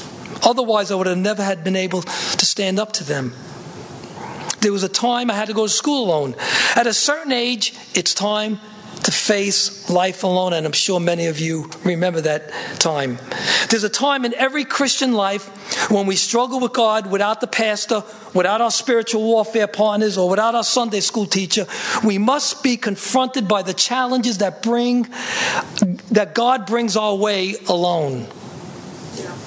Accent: American